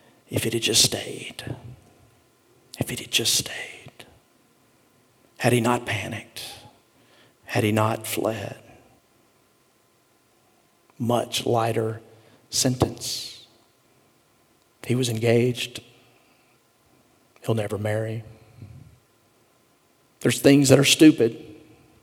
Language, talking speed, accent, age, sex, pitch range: English, 85 wpm, American, 50-69, male, 115-135 Hz